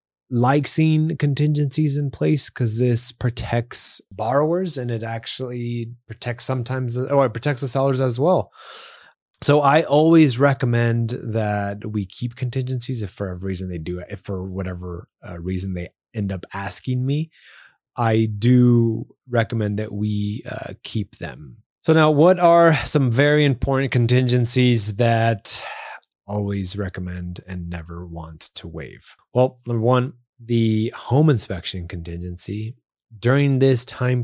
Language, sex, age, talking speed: English, male, 20-39, 140 wpm